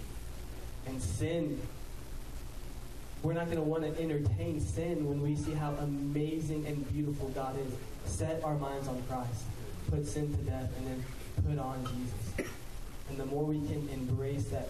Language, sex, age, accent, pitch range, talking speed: English, male, 20-39, American, 120-145 Hz, 165 wpm